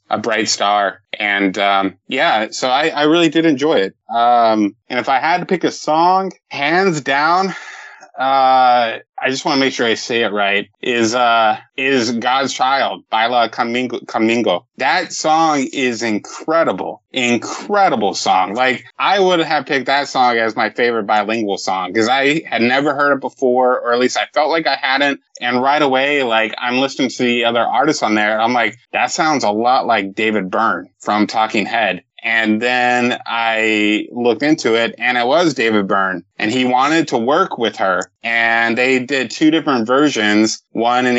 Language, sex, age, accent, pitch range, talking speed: English, male, 20-39, American, 110-130 Hz, 185 wpm